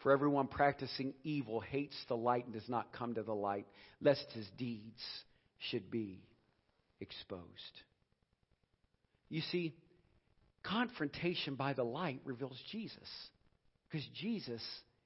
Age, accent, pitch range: 50-69, American, 120-165 Hz